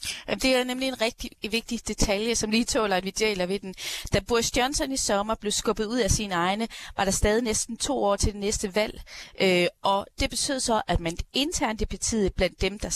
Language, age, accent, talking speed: Danish, 30-49, native, 220 wpm